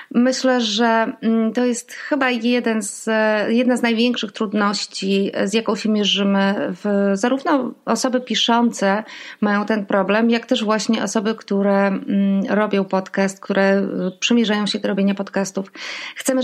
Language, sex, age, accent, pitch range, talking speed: Polish, female, 30-49, native, 200-240 Hz, 130 wpm